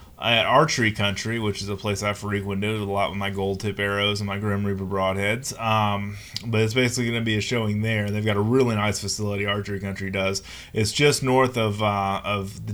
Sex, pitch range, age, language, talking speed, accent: male, 100-115 Hz, 20-39, English, 220 wpm, American